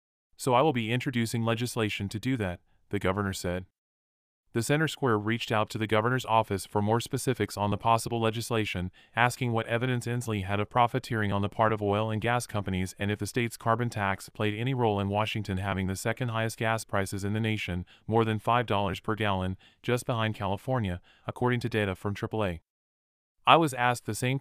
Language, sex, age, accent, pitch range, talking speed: English, male, 30-49, American, 100-120 Hz, 195 wpm